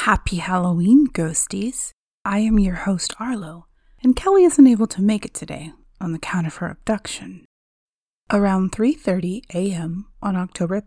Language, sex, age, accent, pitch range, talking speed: English, female, 30-49, American, 180-230 Hz, 150 wpm